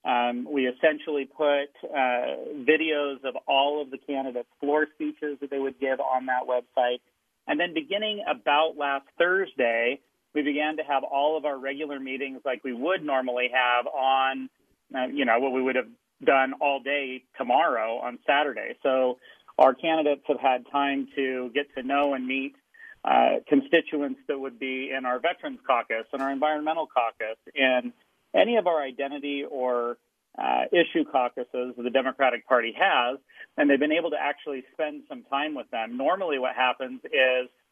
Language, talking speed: English, 170 wpm